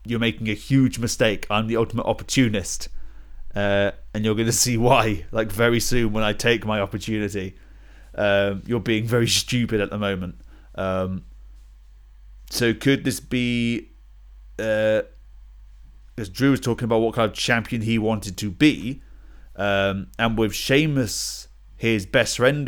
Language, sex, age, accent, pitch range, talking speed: English, male, 30-49, British, 95-115 Hz, 155 wpm